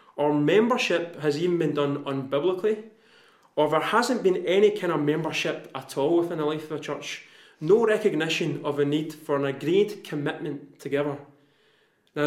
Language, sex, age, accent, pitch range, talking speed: English, male, 30-49, British, 140-175 Hz, 165 wpm